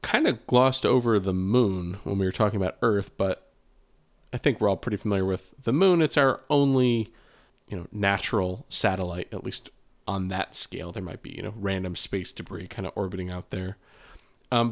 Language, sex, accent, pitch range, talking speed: English, male, American, 95-125 Hz, 195 wpm